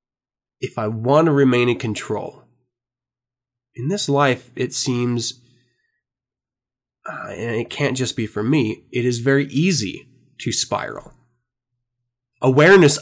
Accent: American